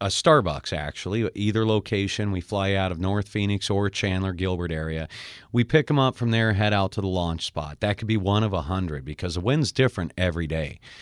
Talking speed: 220 wpm